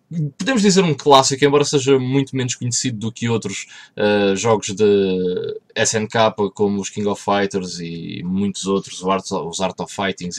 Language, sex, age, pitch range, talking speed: Portuguese, male, 20-39, 95-120 Hz, 155 wpm